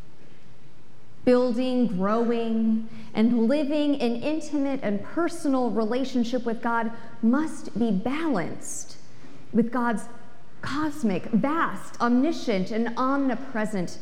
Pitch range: 205-275 Hz